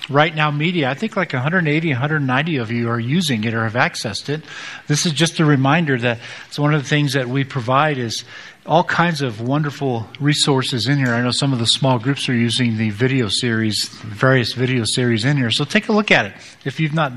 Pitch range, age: 125-155 Hz, 50-69